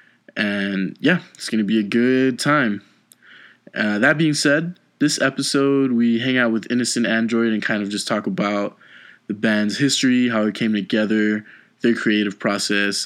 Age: 20-39